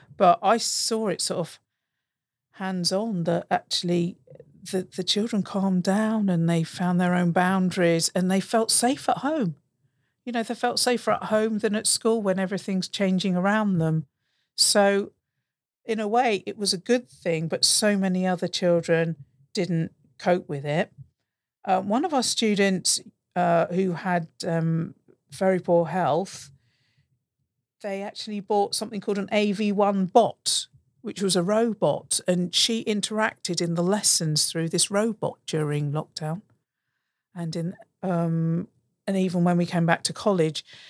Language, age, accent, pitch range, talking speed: English, 50-69, British, 170-210 Hz, 155 wpm